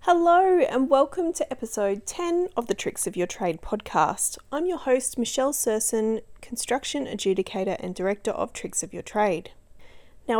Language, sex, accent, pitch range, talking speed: English, female, Australian, 190-250 Hz, 160 wpm